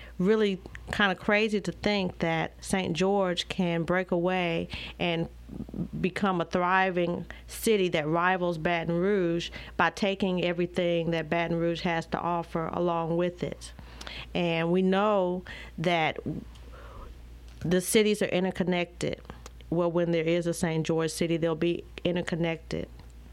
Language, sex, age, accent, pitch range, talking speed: English, female, 40-59, American, 165-185 Hz, 135 wpm